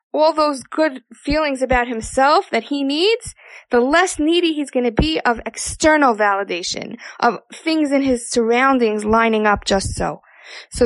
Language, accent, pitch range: English, American, 230-295 Hz